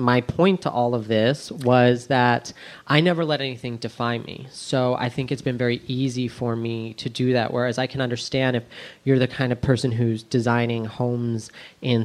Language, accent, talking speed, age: English, American, 200 wpm, 30-49